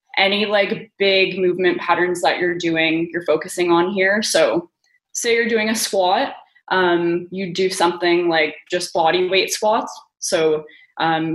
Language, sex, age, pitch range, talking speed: English, female, 20-39, 170-215 Hz, 155 wpm